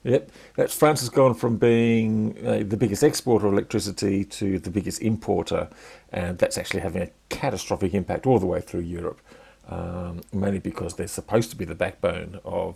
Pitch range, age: 90-110 Hz, 50-69